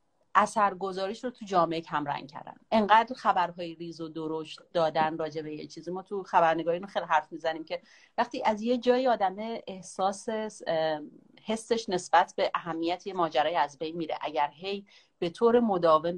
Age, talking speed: 30-49, 160 wpm